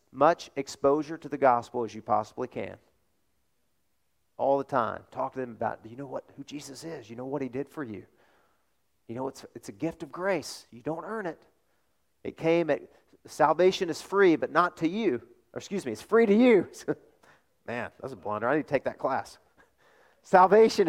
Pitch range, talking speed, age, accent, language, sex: 115-150 Hz, 205 wpm, 40-59, American, English, male